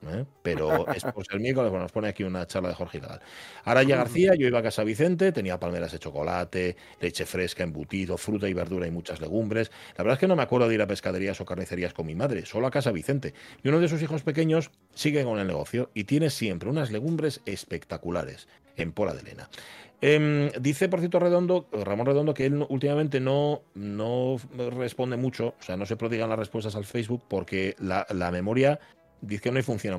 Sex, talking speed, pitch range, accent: male, 210 wpm, 100-145 Hz, Spanish